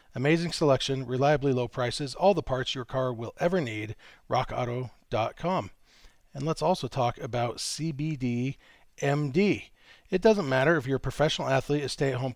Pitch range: 125-155 Hz